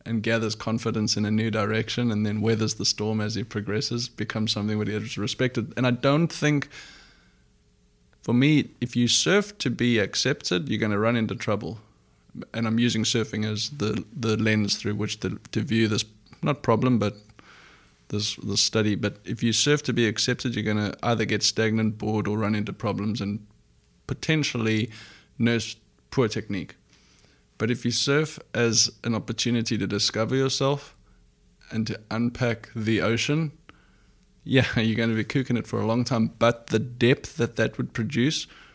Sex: male